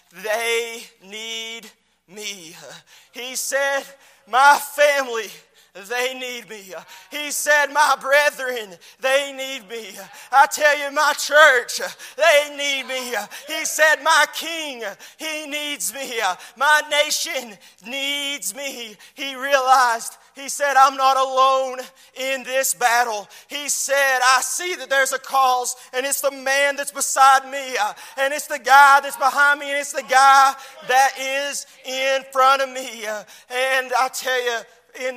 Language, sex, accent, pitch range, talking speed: English, male, American, 240-275 Hz, 140 wpm